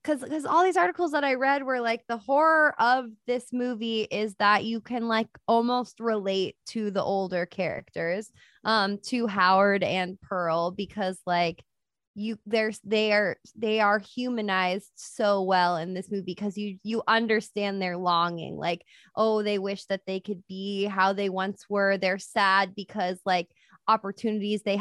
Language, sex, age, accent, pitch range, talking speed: English, female, 20-39, American, 190-225 Hz, 165 wpm